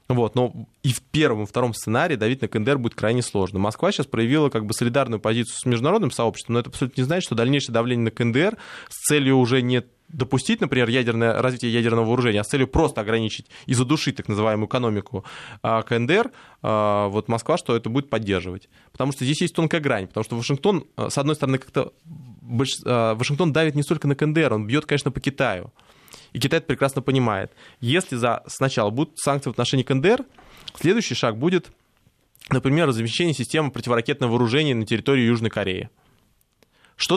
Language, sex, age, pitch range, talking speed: Russian, male, 20-39, 115-140 Hz, 180 wpm